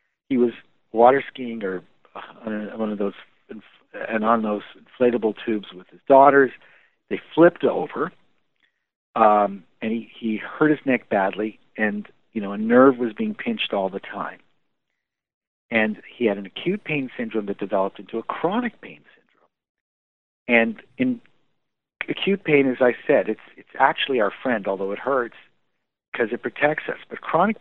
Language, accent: English, American